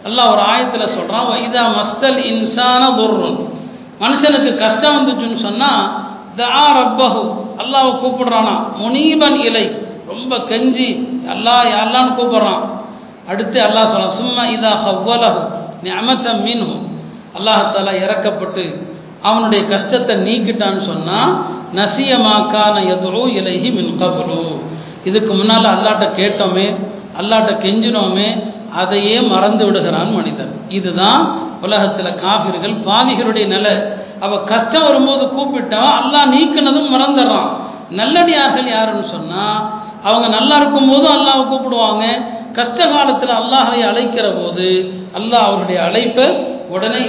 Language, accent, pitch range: Tamil, native, 205-250 Hz